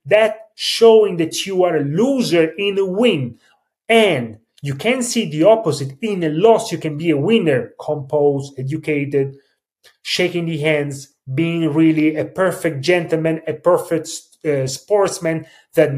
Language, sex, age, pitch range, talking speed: English, male, 30-49, 140-205 Hz, 145 wpm